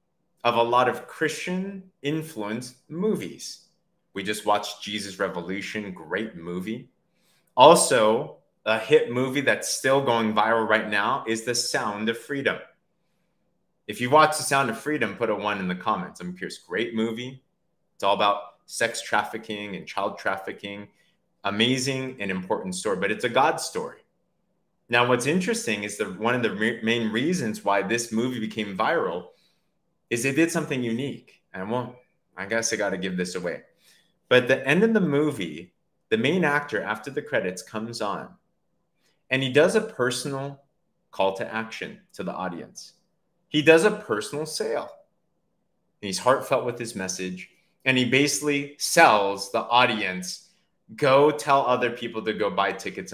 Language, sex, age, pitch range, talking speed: English, male, 30-49, 110-160 Hz, 160 wpm